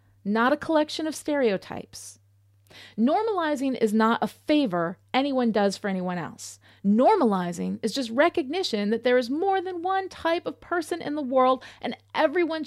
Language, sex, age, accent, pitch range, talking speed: English, female, 30-49, American, 190-270 Hz, 155 wpm